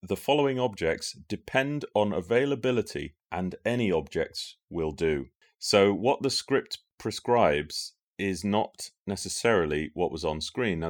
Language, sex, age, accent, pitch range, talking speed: English, male, 30-49, British, 85-110 Hz, 130 wpm